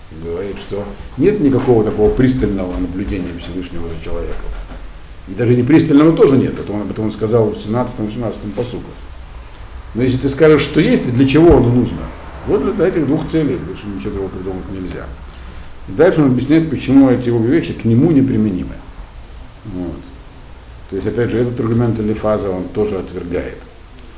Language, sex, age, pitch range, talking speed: Russian, male, 50-69, 85-125 Hz, 165 wpm